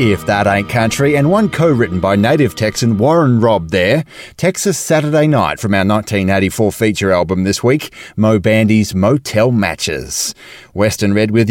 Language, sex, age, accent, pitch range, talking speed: English, male, 30-49, Australian, 100-145 Hz, 155 wpm